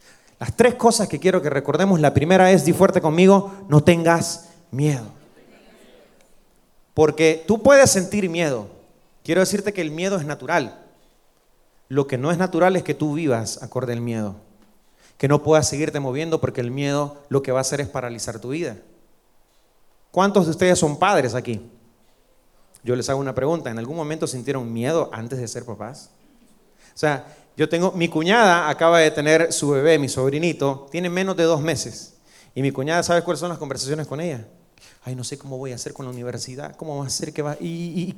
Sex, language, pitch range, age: male, Spanish, 130-185 Hz, 30-49